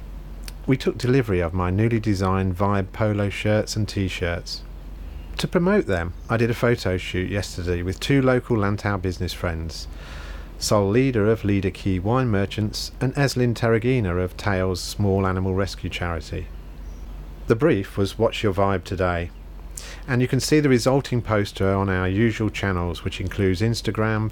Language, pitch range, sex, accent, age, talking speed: English, 90-115 Hz, male, British, 40-59, 160 wpm